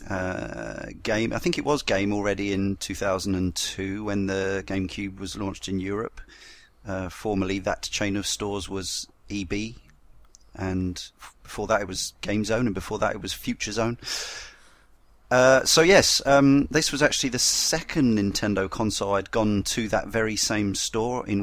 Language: English